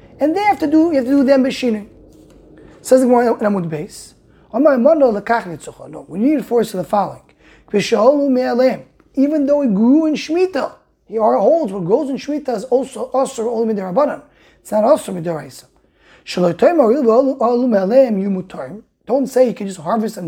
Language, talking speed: English, 165 wpm